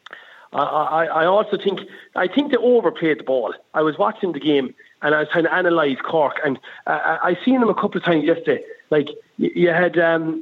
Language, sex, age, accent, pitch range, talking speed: English, male, 40-59, Irish, 150-200 Hz, 215 wpm